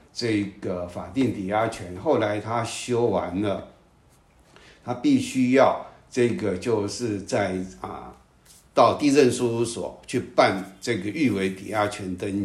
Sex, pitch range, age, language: male, 95-125 Hz, 60-79, Chinese